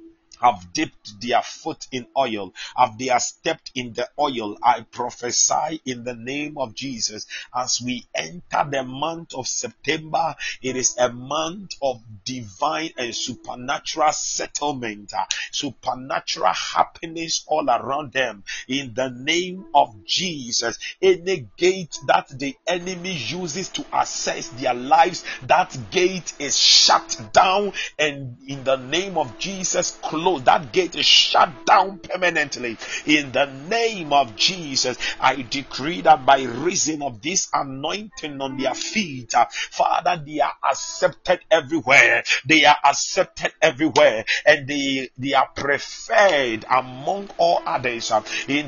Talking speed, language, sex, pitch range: 135 wpm, English, male, 130-180 Hz